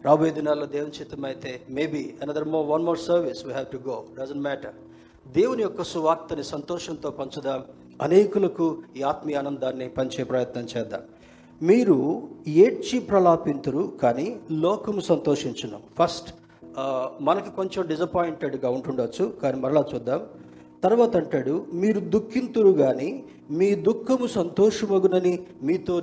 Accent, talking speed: native, 105 wpm